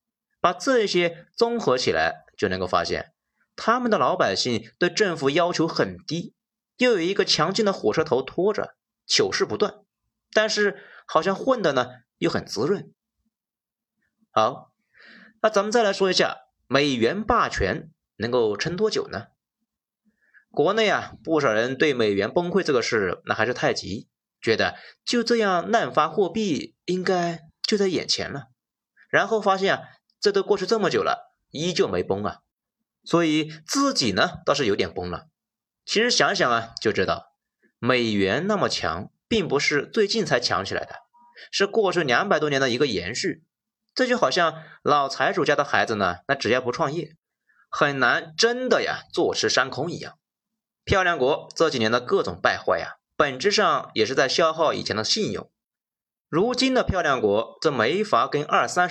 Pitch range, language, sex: 165-235 Hz, Chinese, male